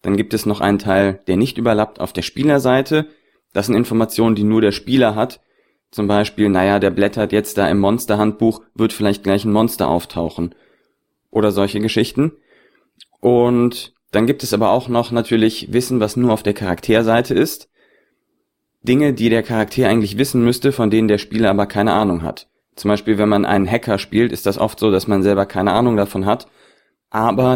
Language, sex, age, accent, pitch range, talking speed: German, male, 30-49, German, 100-120 Hz, 190 wpm